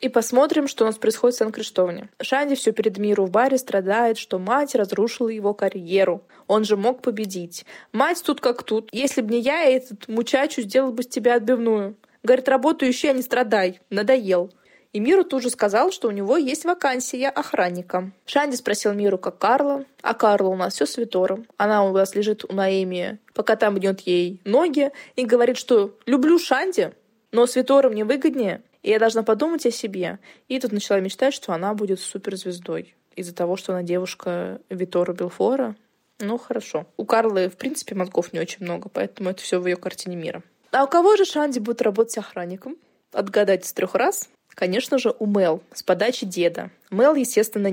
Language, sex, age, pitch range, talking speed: Russian, female, 20-39, 195-255 Hz, 185 wpm